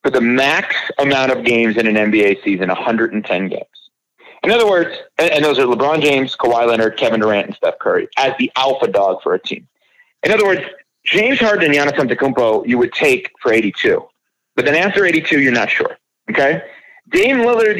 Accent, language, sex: American, English, male